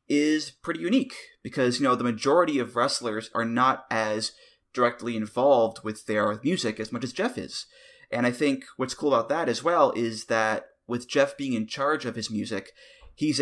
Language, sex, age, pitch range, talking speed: English, male, 20-39, 115-160 Hz, 190 wpm